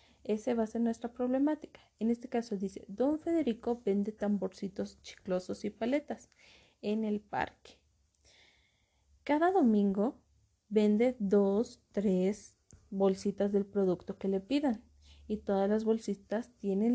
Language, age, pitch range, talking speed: Spanish, 30-49, 195-230 Hz, 125 wpm